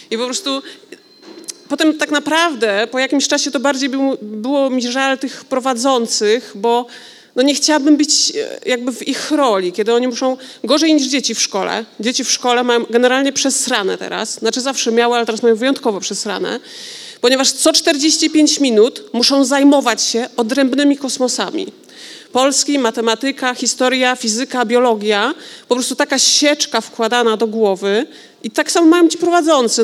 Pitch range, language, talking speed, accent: 230-280 Hz, Polish, 150 wpm, native